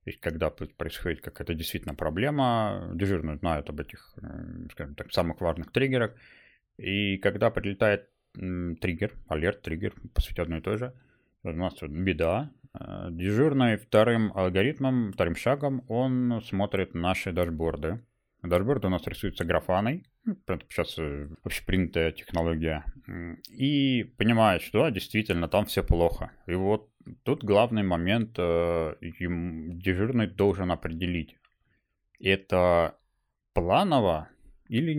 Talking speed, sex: 115 wpm, male